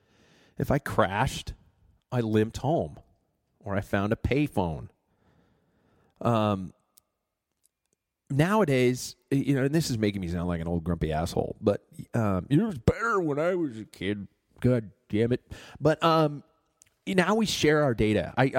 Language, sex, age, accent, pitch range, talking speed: English, male, 40-59, American, 100-130 Hz, 150 wpm